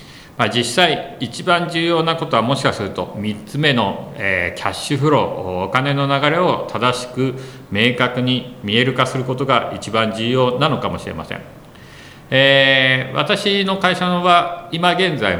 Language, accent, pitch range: Japanese, native, 105-145 Hz